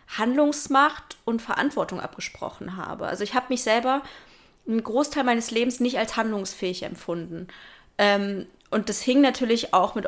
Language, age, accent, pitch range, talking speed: German, 20-39, German, 195-240 Hz, 150 wpm